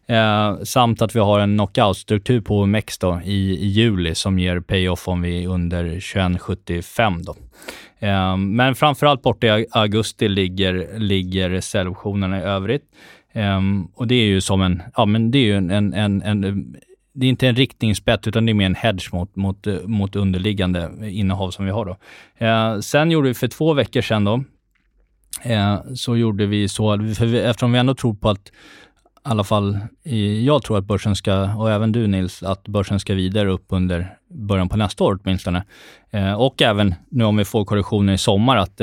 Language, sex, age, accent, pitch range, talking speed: Swedish, male, 20-39, native, 95-120 Hz, 190 wpm